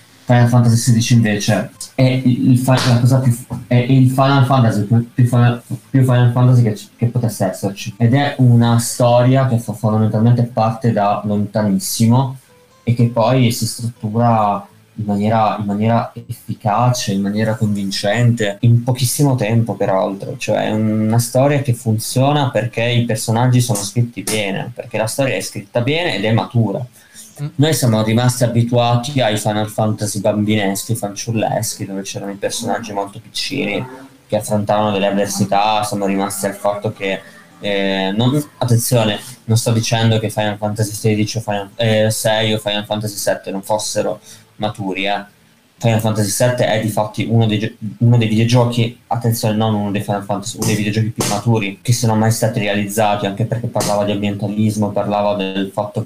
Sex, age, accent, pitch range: male, 20-39, native, 105-120 Hz